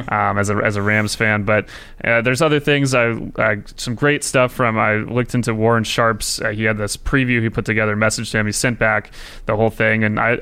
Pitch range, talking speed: 110-120 Hz, 250 wpm